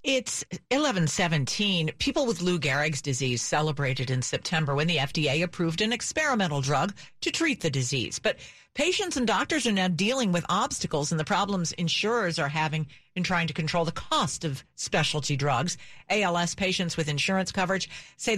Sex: female